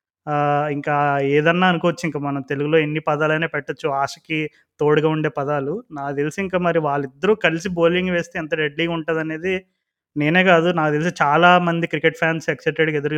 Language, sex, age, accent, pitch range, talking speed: Telugu, male, 20-39, native, 150-175 Hz, 150 wpm